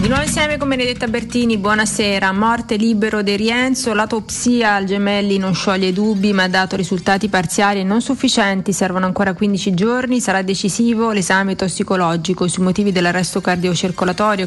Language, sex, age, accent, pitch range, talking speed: Italian, female, 30-49, native, 190-230 Hz, 155 wpm